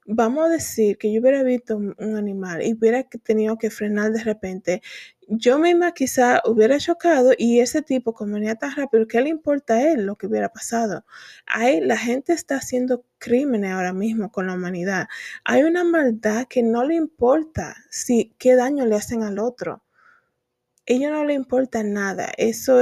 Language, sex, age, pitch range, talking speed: English, female, 20-39, 215-260 Hz, 180 wpm